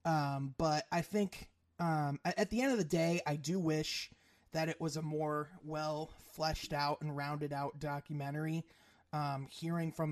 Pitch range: 150-190 Hz